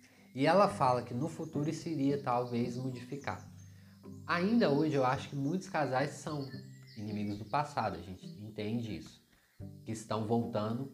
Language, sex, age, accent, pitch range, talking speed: Portuguese, male, 20-39, Brazilian, 100-130 Hz, 155 wpm